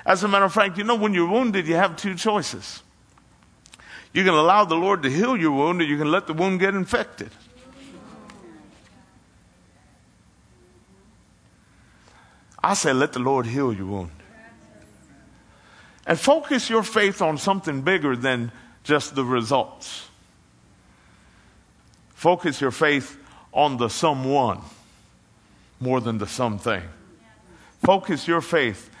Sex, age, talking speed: male, 50-69, 130 wpm